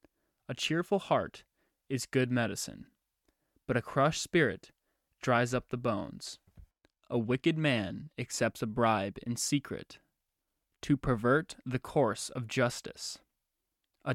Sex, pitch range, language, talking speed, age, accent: male, 120-140 Hz, English, 125 wpm, 20-39, American